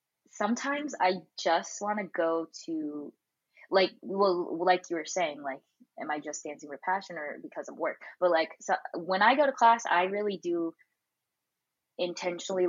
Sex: female